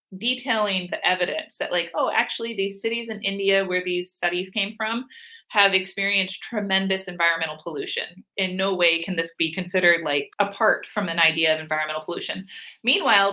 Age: 30-49